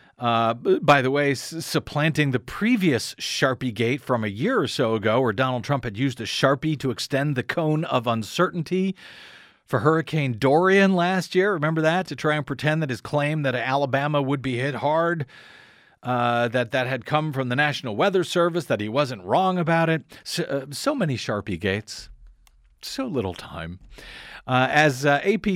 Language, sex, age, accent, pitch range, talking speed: English, male, 40-59, American, 125-170 Hz, 180 wpm